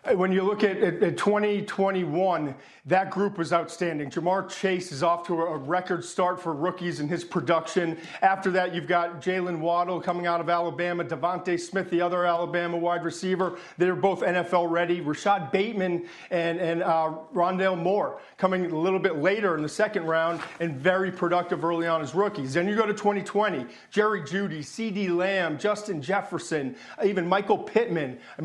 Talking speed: 175 wpm